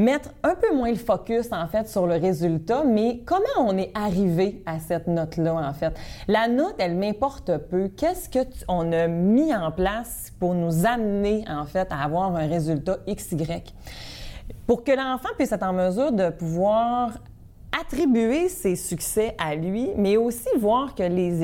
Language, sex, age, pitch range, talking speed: French, female, 30-49, 170-235 Hz, 170 wpm